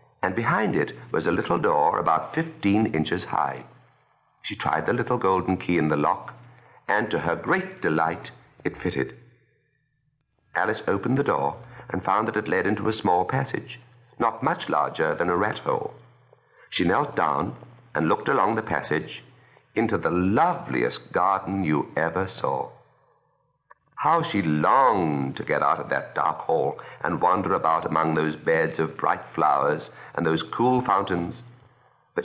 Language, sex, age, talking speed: English, male, 60-79, 160 wpm